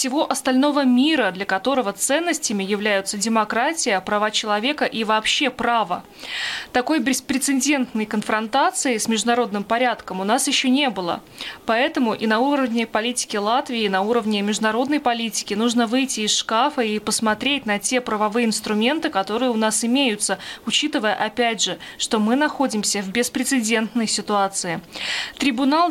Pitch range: 220-265 Hz